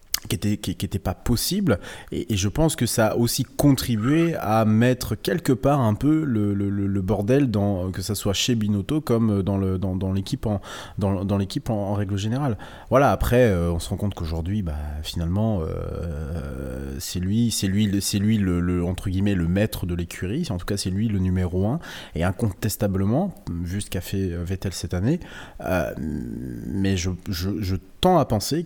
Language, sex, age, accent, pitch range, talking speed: French, male, 30-49, French, 95-120 Hz, 200 wpm